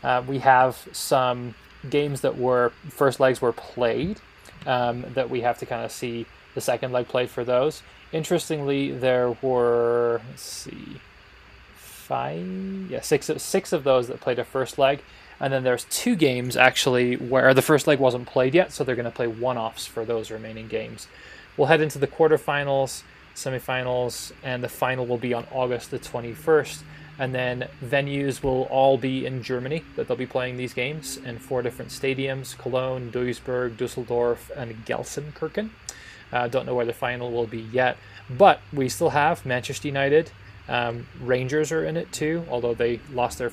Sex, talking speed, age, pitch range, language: male, 180 wpm, 20-39, 120-140 Hz, English